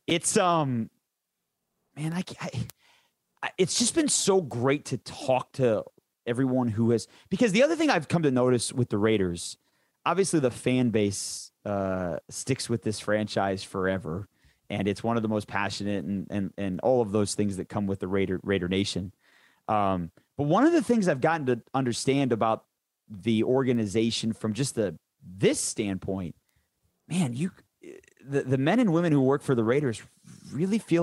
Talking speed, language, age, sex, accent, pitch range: 175 wpm, English, 30-49, male, American, 110-170 Hz